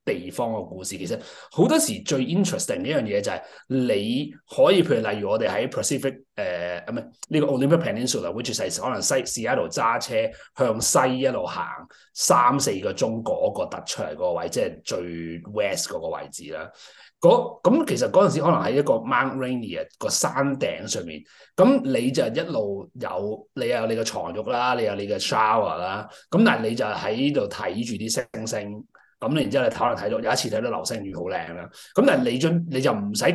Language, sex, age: Chinese, male, 30-49